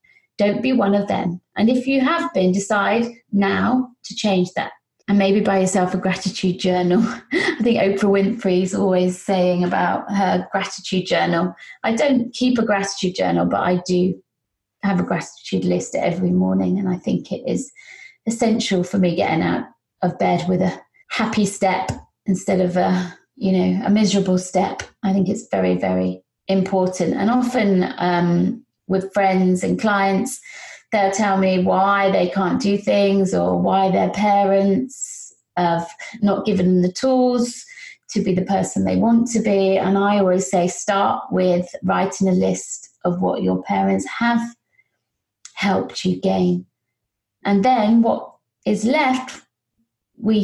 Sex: female